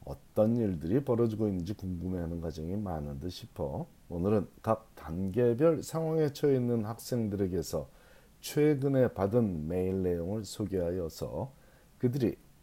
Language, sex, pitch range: Korean, male, 85-120 Hz